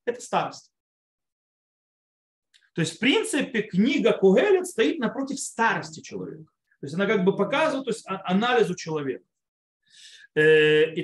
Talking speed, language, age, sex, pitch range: 125 wpm, Russian, 30-49, male, 165-240 Hz